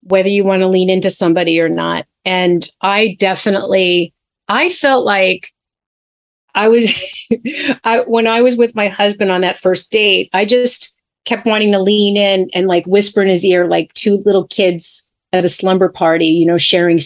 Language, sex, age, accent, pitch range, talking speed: English, female, 30-49, American, 170-210 Hz, 185 wpm